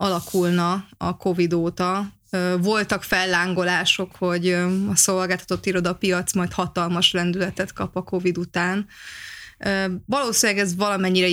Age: 20-39